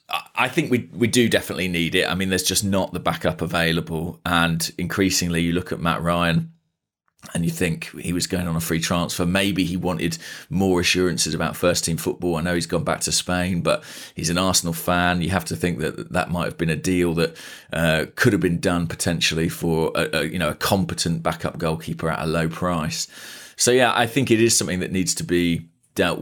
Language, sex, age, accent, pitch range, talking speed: English, male, 30-49, British, 80-95 Hz, 220 wpm